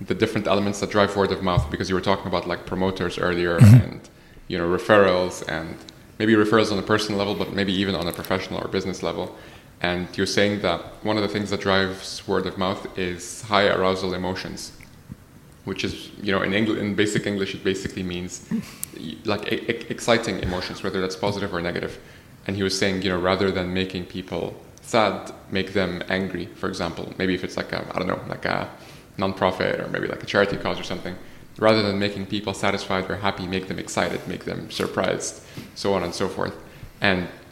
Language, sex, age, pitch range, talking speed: English, male, 20-39, 90-100 Hz, 205 wpm